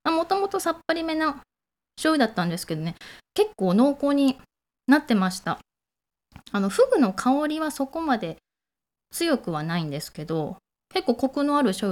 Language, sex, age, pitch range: Japanese, female, 20-39, 170-260 Hz